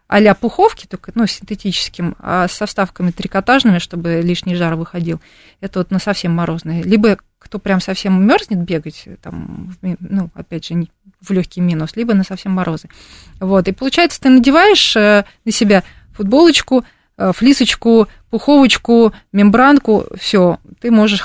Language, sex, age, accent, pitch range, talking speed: Russian, female, 30-49, native, 180-235 Hz, 135 wpm